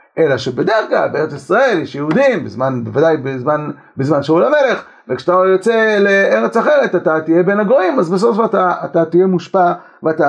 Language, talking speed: Hebrew, 155 wpm